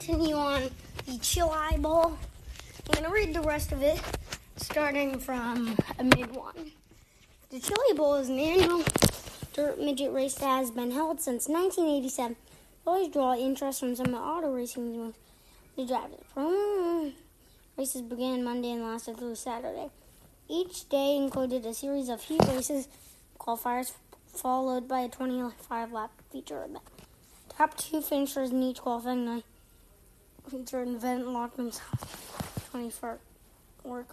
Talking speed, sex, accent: 140 wpm, female, American